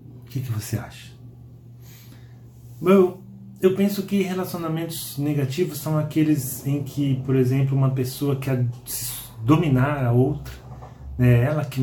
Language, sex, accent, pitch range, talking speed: Portuguese, male, Brazilian, 120-145 Hz, 130 wpm